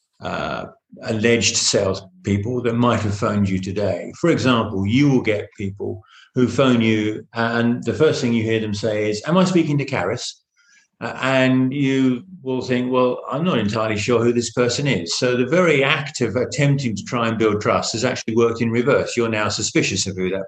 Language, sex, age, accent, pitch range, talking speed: English, male, 50-69, British, 100-130 Hz, 200 wpm